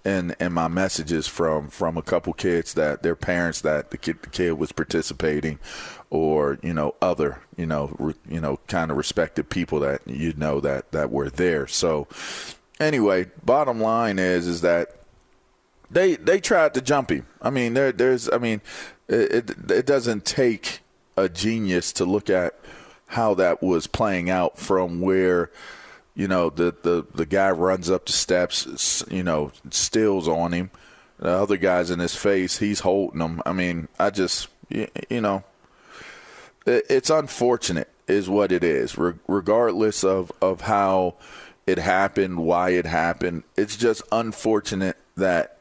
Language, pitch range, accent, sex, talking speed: English, 85-100 Hz, American, male, 165 wpm